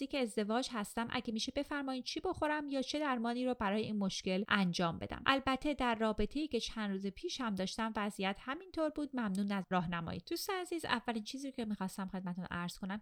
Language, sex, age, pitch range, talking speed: Persian, female, 30-49, 185-260 Hz, 195 wpm